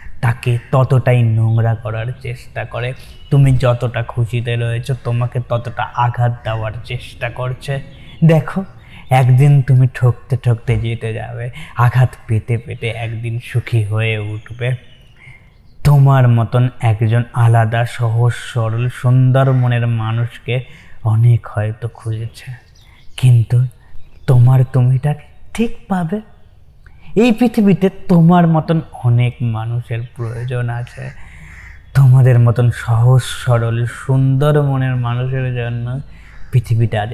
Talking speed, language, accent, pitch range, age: 105 wpm, Bengali, native, 115-130 Hz, 20-39